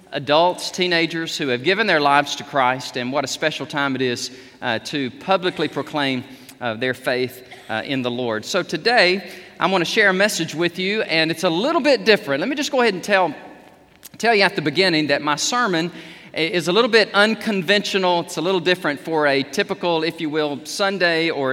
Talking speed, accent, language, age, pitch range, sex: 210 wpm, American, English, 40-59, 145-190 Hz, male